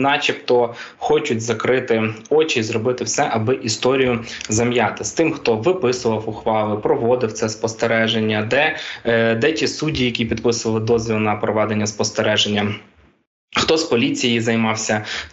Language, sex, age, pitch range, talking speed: Ukrainian, male, 20-39, 110-120 Hz, 130 wpm